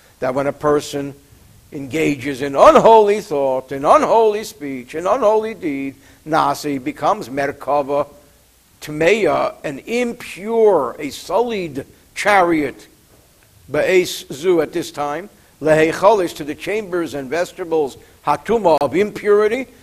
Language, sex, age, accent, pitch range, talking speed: English, male, 60-79, American, 150-220 Hz, 110 wpm